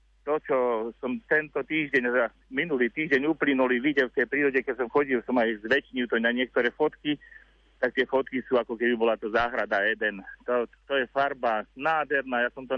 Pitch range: 125-155 Hz